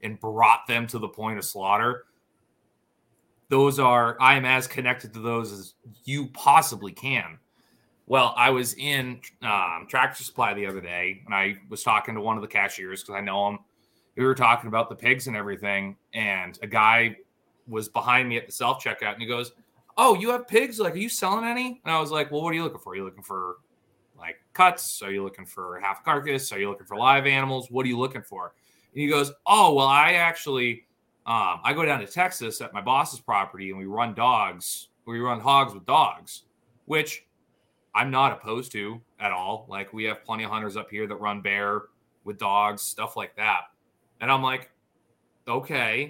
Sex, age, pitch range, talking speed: male, 30-49, 105-140 Hz, 205 wpm